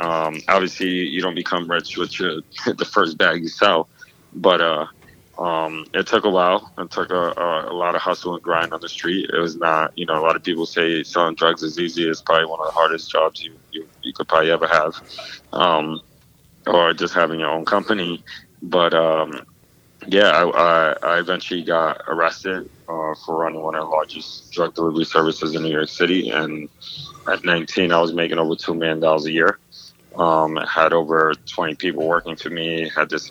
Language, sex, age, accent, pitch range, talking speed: English, male, 20-39, American, 80-85 Hz, 195 wpm